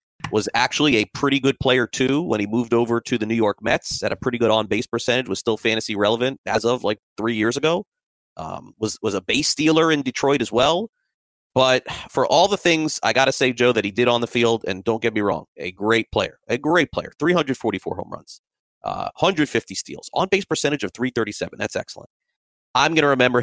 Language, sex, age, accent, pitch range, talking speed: English, male, 30-49, American, 105-125 Hz, 220 wpm